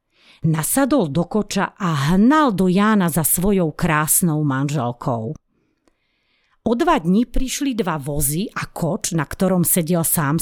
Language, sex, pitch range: Slovak, female, 160-205 Hz